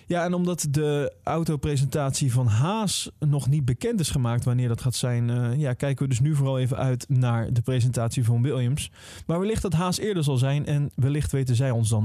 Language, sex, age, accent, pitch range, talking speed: Dutch, male, 20-39, Dutch, 120-160 Hz, 215 wpm